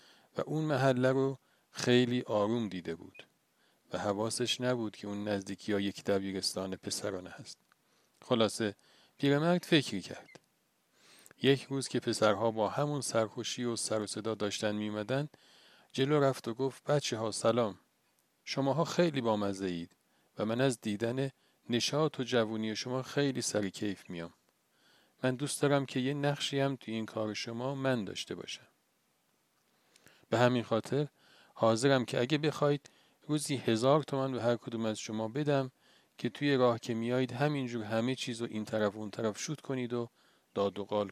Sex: male